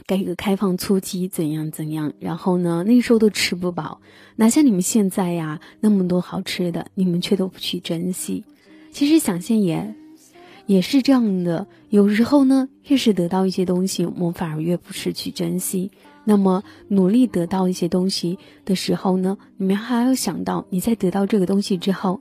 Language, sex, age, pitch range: Chinese, female, 20-39, 180-230 Hz